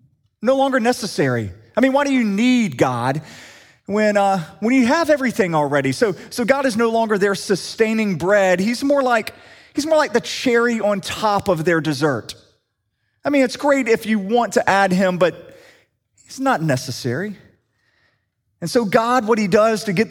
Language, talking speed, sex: English, 180 wpm, male